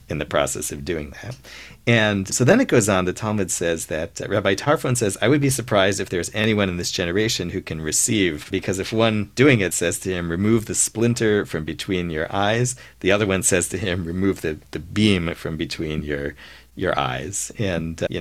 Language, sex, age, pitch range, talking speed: English, male, 40-59, 75-100 Hz, 220 wpm